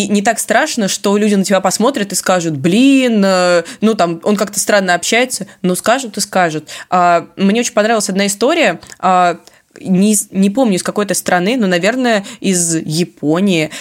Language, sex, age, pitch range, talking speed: Russian, female, 20-39, 175-205 Hz, 160 wpm